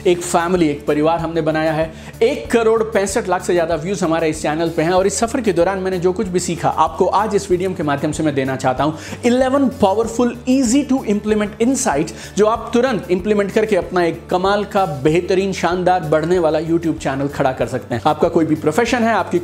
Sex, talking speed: male, 220 wpm